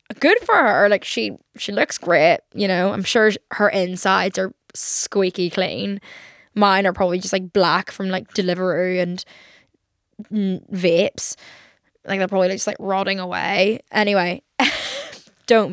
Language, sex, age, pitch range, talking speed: English, female, 10-29, 190-220 Hz, 140 wpm